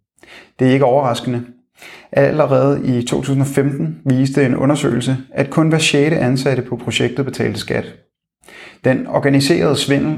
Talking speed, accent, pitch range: 130 wpm, native, 125-145 Hz